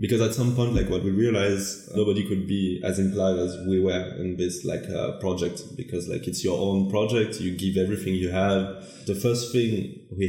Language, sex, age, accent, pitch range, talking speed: English, male, 20-39, French, 95-105 Hz, 210 wpm